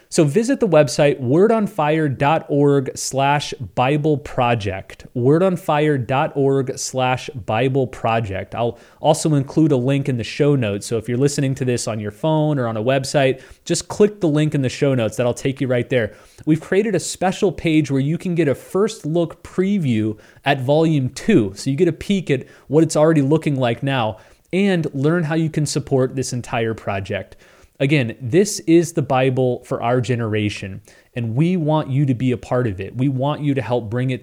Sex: male